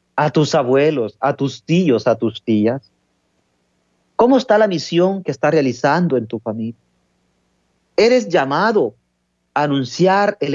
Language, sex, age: Spanish, male, 40-59